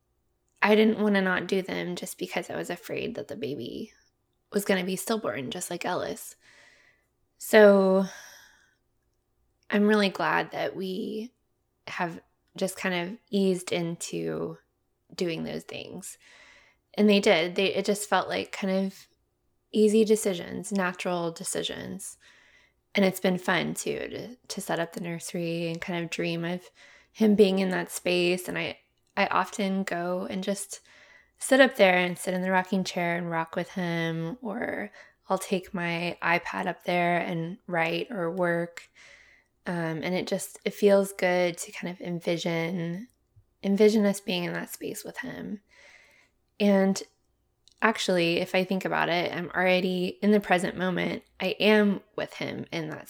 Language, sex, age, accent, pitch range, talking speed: English, female, 20-39, American, 175-205 Hz, 160 wpm